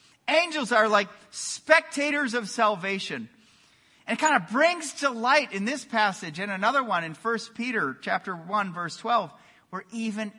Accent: American